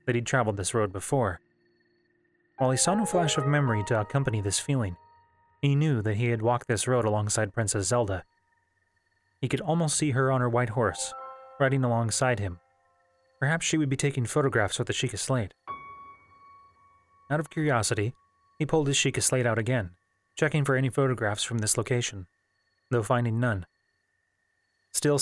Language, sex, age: English, male, 30-49